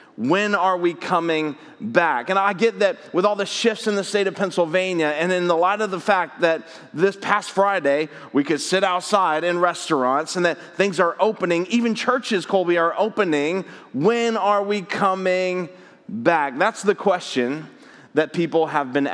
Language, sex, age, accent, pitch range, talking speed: English, male, 30-49, American, 160-205 Hz, 180 wpm